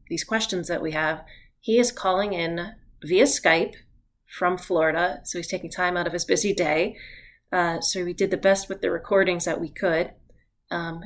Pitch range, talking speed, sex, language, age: 165-195 Hz, 190 wpm, female, English, 30-49